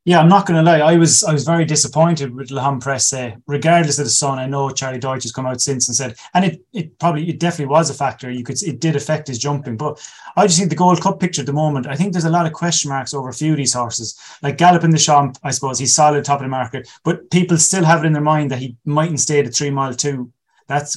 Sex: male